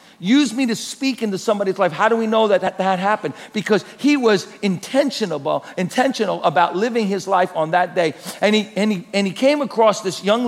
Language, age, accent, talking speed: English, 50-69, American, 205 wpm